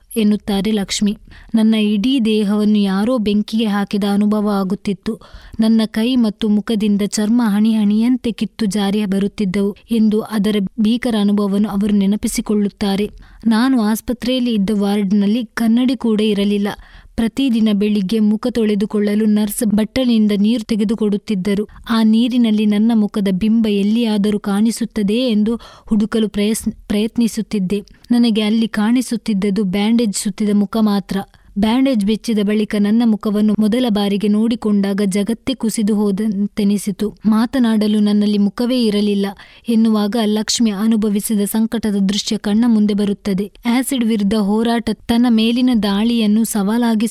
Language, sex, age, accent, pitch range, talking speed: Kannada, female, 20-39, native, 205-225 Hz, 110 wpm